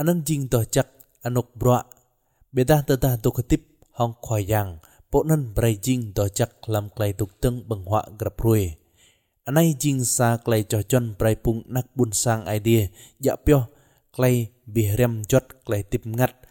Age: 20-39